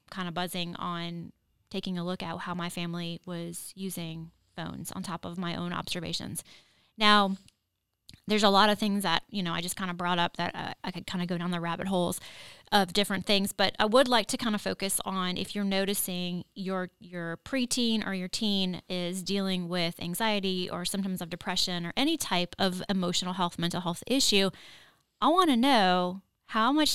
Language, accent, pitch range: English, American, 175-205 Hz